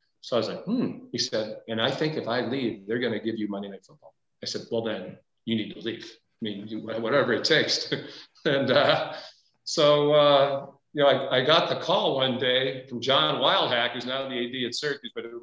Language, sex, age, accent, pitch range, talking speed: English, male, 40-59, American, 110-125 Hz, 220 wpm